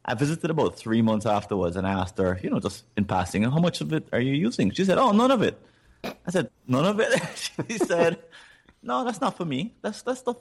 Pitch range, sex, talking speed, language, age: 95-120 Hz, male, 240 wpm, English, 30-49